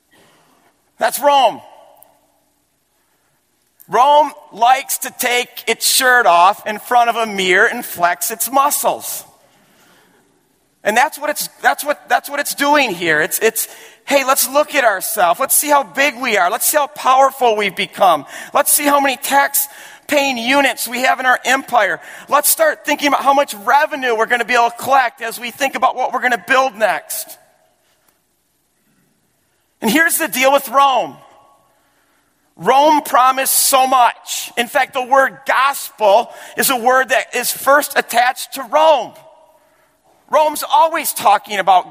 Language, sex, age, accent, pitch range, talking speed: English, male, 40-59, American, 230-285 Hz, 160 wpm